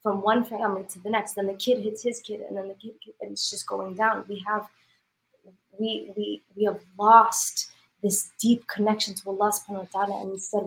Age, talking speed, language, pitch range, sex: 20-39, 200 wpm, English, 190-220 Hz, female